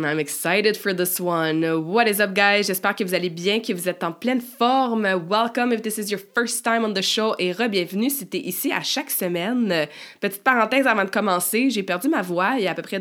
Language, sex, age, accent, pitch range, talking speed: French, female, 20-39, Canadian, 175-220 Hz, 245 wpm